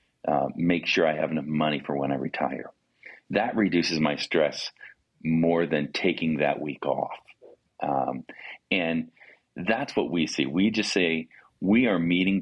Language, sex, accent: English, male, American